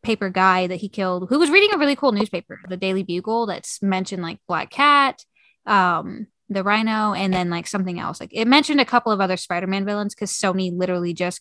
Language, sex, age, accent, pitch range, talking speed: English, female, 10-29, American, 185-250 Hz, 215 wpm